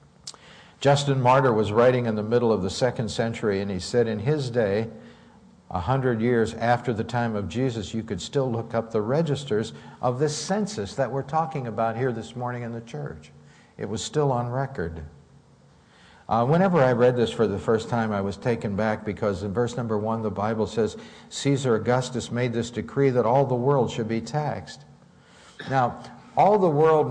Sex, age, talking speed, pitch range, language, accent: male, 60-79, 195 wpm, 105-130 Hz, English, American